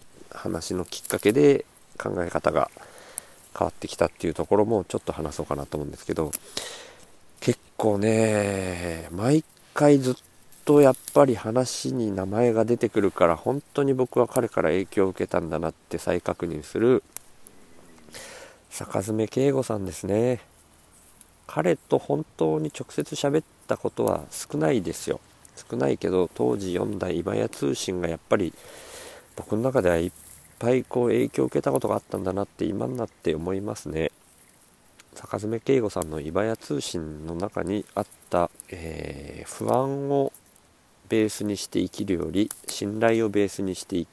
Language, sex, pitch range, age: Japanese, male, 85-130 Hz, 40-59